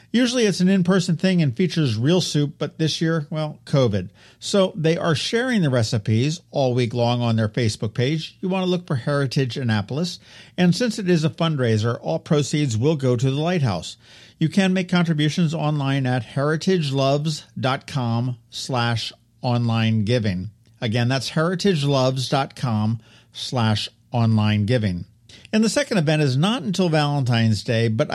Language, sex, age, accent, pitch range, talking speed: English, male, 50-69, American, 120-165 Hz, 155 wpm